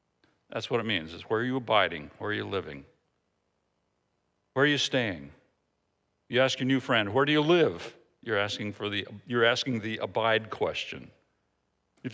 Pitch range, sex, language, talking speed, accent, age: 110-140 Hz, male, English, 180 wpm, American, 60-79